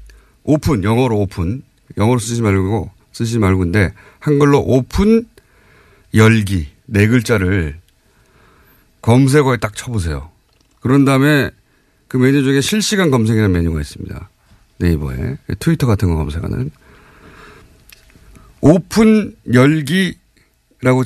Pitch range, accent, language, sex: 100-155 Hz, native, Korean, male